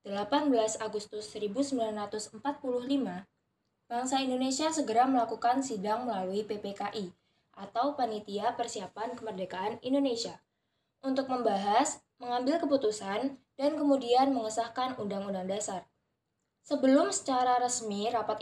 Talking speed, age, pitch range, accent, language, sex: 90 wpm, 10-29, 210-260 Hz, native, Indonesian, female